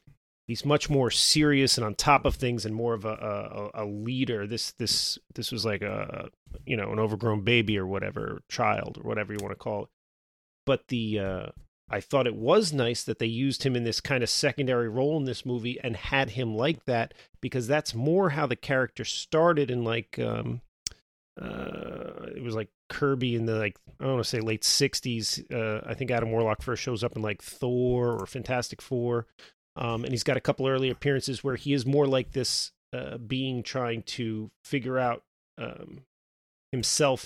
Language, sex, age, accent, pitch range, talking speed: English, male, 30-49, American, 110-135 Hz, 200 wpm